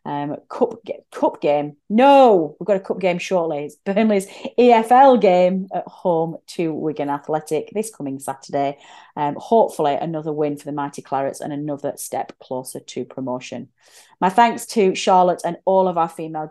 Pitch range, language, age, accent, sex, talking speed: 145-190 Hz, English, 30-49, British, female, 170 wpm